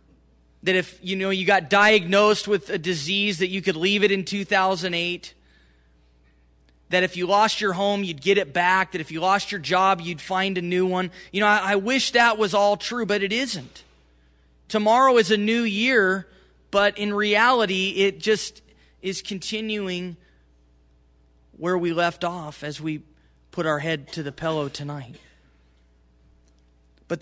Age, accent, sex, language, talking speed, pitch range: 20-39, American, male, English, 170 wpm, 145-210 Hz